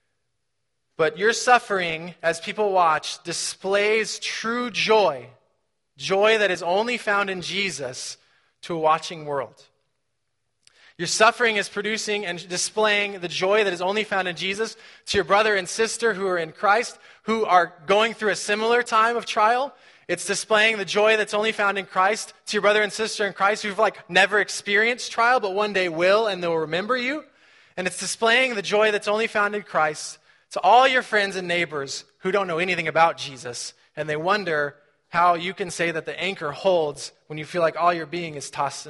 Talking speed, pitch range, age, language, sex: 190 wpm, 155-210 Hz, 20-39, English, male